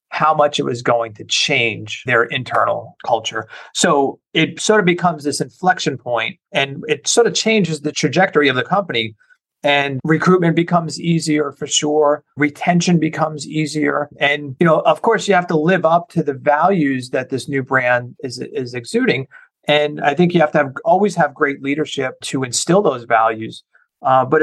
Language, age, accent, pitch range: English, 30-49, American, 125-155 Hz